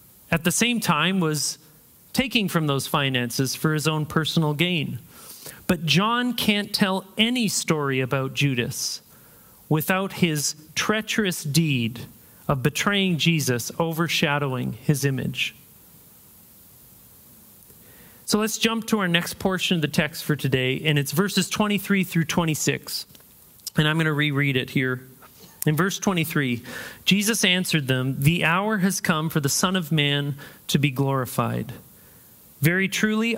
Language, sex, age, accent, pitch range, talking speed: English, male, 40-59, American, 145-190 Hz, 140 wpm